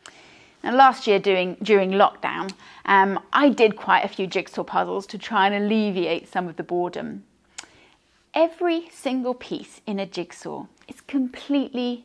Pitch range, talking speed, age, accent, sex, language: 205-280 Hz, 150 wpm, 30-49, British, female, English